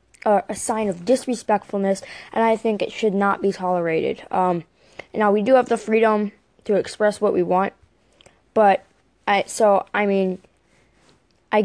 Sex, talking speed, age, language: female, 155 wpm, 10-29, English